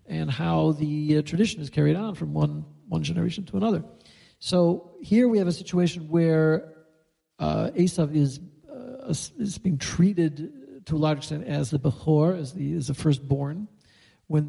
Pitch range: 150-180 Hz